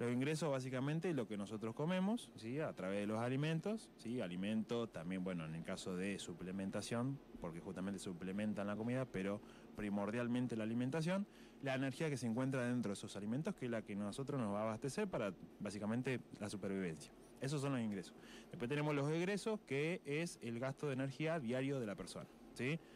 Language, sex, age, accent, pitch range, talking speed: Spanish, male, 20-39, Argentinian, 110-140 Hz, 190 wpm